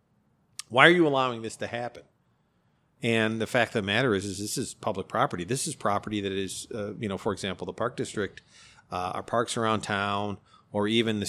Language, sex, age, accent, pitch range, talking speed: English, male, 50-69, American, 105-125 Hz, 215 wpm